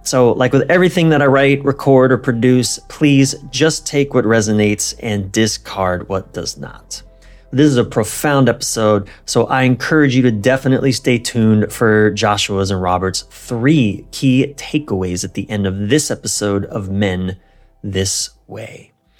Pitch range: 105-140 Hz